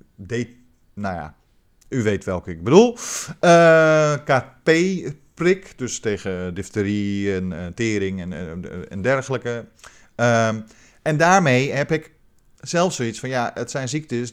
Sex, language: male, Dutch